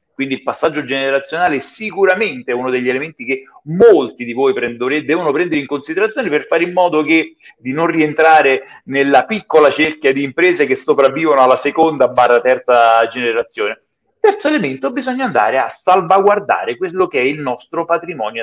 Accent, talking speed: native, 165 wpm